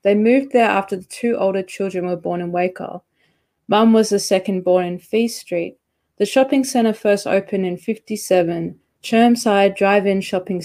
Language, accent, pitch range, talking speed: English, Australian, 185-225 Hz, 170 wpm